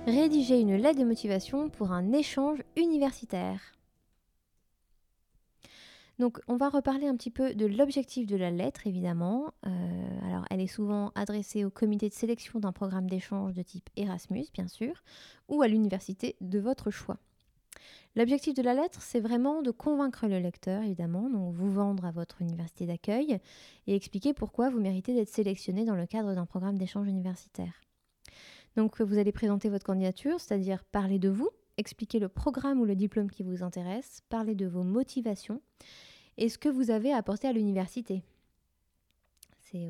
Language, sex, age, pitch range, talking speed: French, female, 20-39, 185-245 Hz, 165 wpm